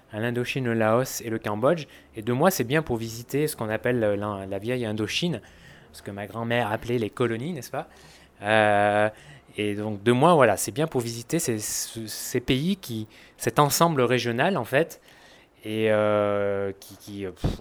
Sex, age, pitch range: male, 20-39, 105-130 Hz